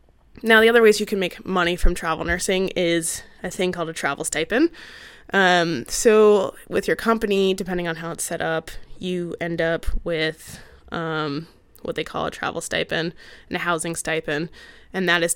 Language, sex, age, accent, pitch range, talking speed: English, female, 20-39, American, 160-195 Hz, 185 wpm